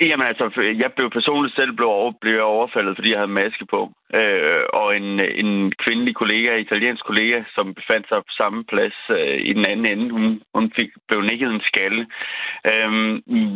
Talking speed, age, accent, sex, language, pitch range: 175 wpm, 30-49, native, male, Danish, 110-130 Hz